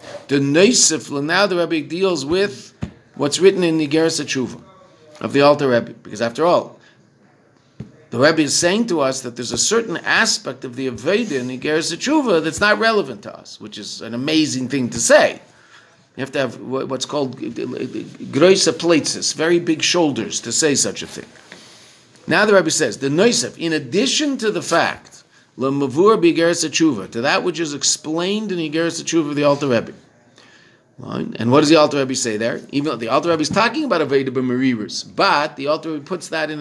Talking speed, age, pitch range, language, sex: 170 wpm, 50-69, 130-170 Hz, English, male